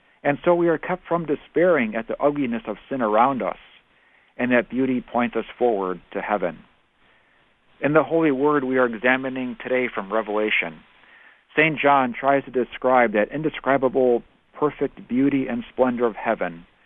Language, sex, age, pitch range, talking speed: English, male, 50-69, 115-140 Hz, 160 wpm